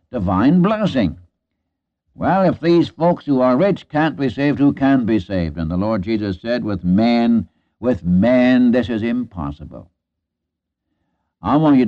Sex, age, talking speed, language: male, 60-79, 155 wpm, English